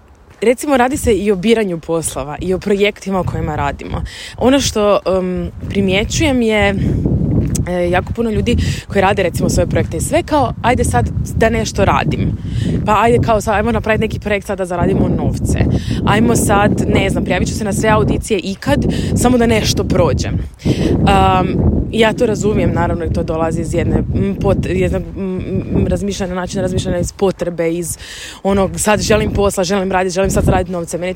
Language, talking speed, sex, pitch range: Croatian, 175 wpm, female, 165-210 Hz